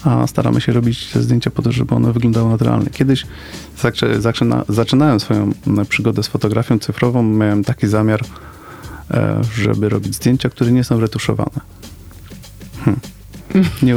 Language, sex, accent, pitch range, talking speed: Polish, male, native, 105-130 Hz, 130 wpm